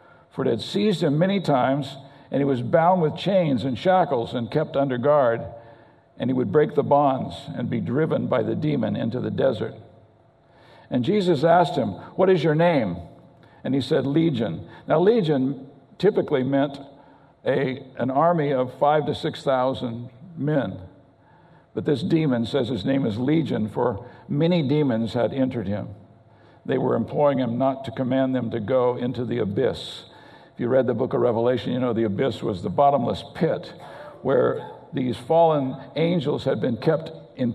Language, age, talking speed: English, 50-69, 175 wpm